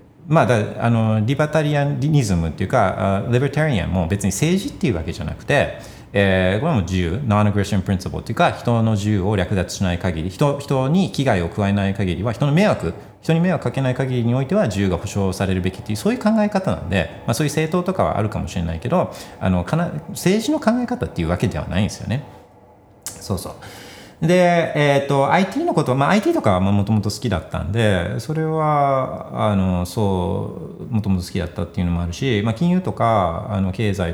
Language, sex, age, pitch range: Japanese, male, 40-59, 95-145 Hz